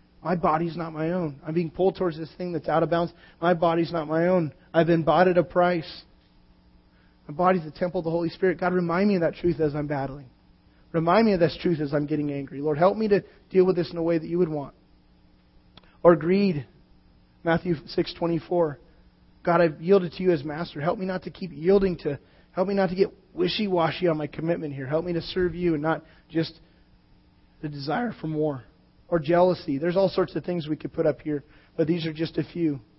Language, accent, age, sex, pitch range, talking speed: English, American, 30-49, male, 150-180 Hz, 225 wpm